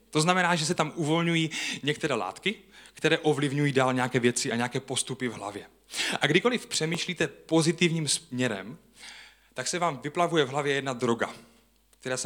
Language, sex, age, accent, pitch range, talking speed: Czech, male, 30-49, native, 140-175 Hz, 160 wpm